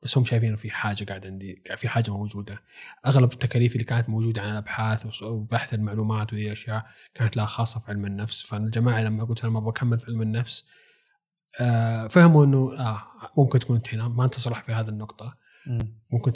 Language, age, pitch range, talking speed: Arabic, 20-39, 110-135 Hz, 180 wpm